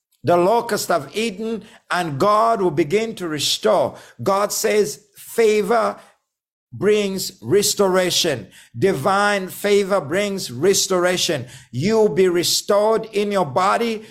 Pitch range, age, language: 185-230 Hz, 50-69, English